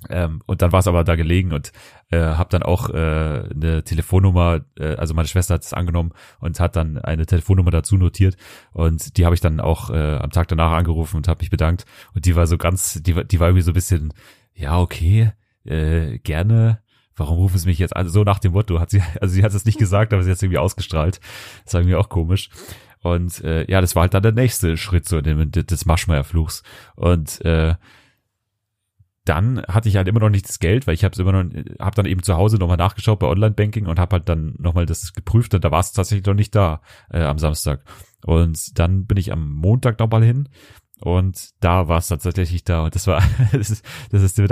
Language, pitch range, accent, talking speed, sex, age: German, 85-105 Hz, German, 230 wpm, male, 30-49